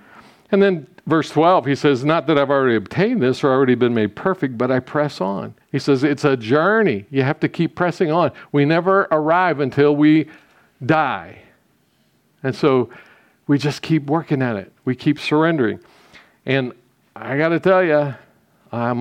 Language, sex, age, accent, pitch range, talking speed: English, male, 50-69, American, 130-155 Hz, 175 wpm